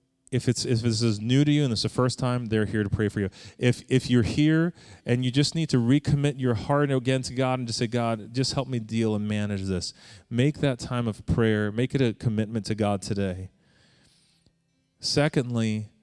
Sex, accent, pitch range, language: male, American, 120-170 Hz, English